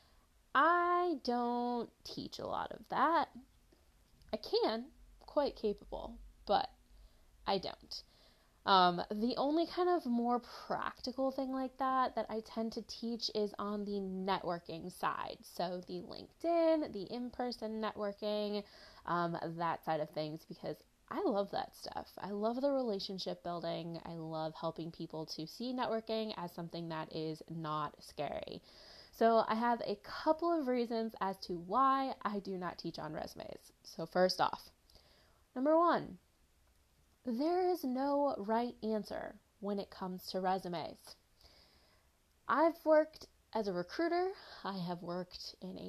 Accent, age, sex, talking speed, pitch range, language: American, 20-39, female, 140 wpm, 175-265 Hz, English